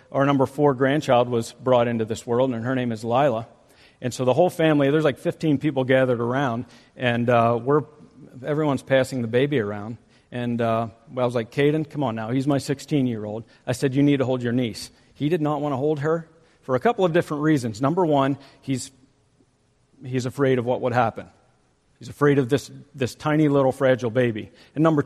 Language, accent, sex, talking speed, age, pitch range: English, American, male, 205 wpm, 50-69, 125-165 Hz